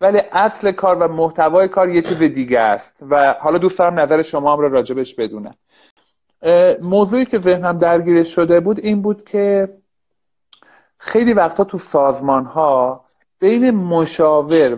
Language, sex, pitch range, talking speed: Persian, male, 150-195 Hz, 145 wpm